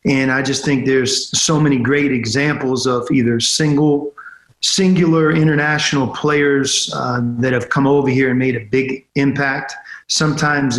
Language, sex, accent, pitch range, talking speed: English, male, American, 125-140 Hz, 150 wpm